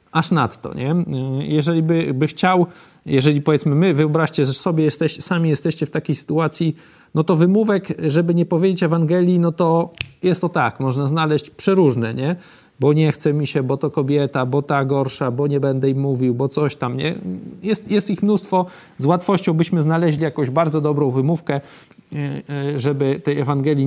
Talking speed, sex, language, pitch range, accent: 180 wpm, male, Polish, 140-170 Hz, native